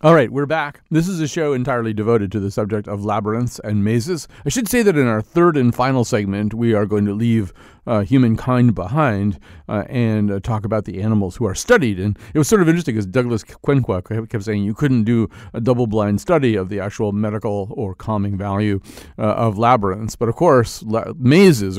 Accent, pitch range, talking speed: American, 105-125 Hz, 210 wpm